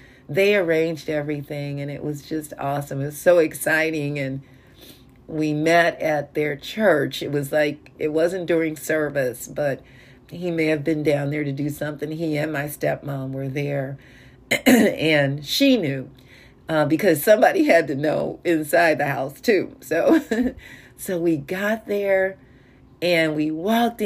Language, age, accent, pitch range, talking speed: English, 40-59, American, 145-175 Hz, 155 wpm